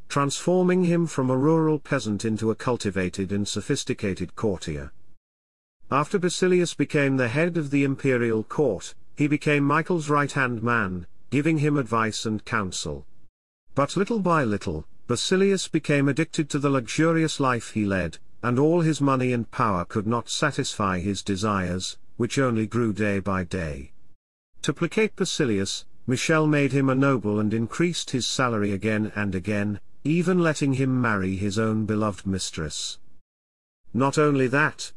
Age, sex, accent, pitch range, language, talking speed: 50-69, male, British, 100-145 Hz, English, 150 wpm